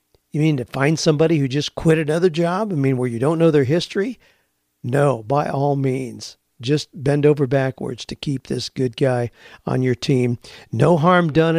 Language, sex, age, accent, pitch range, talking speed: English, male, 50-69, American, 125-160 Hz, 190 wpm